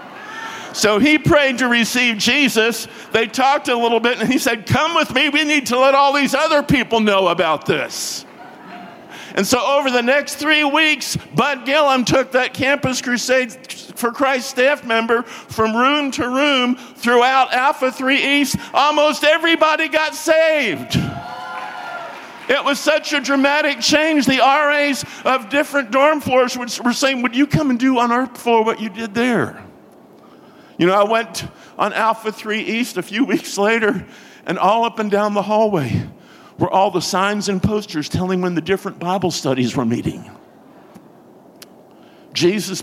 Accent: American